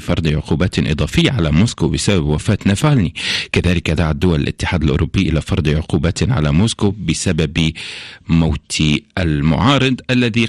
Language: Arabic